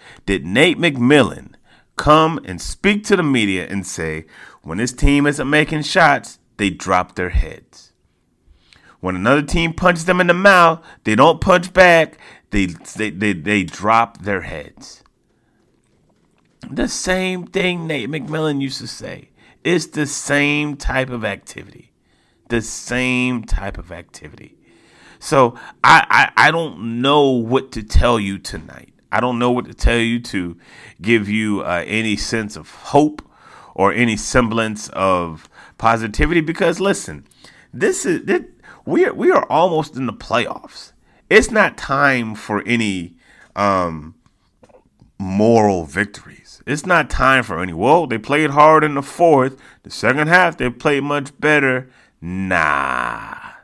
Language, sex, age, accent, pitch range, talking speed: English, male, 30-49, American, 100-150 Hz, 145 wpm